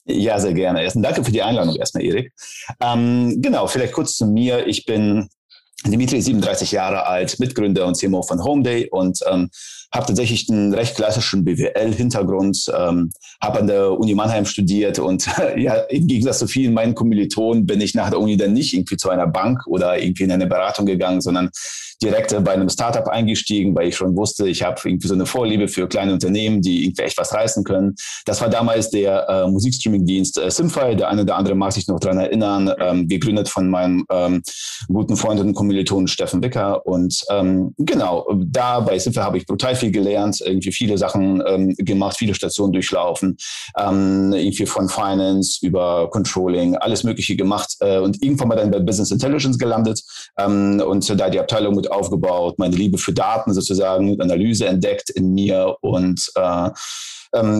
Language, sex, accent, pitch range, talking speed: German, male, German, 95-110 Hz, 185 wpm